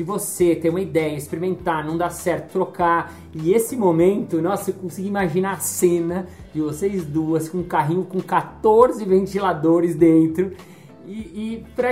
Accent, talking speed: Brazilian, 155 wpm